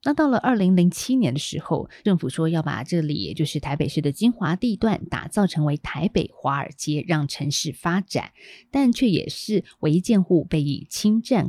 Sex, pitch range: female, 150-190 Hz